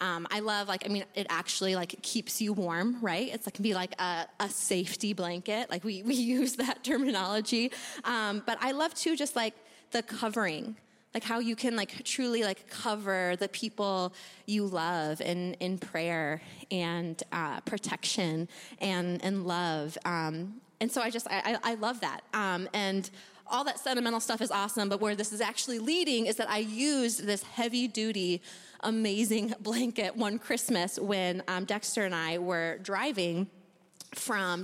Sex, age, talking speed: female, 20-39, 175 wpm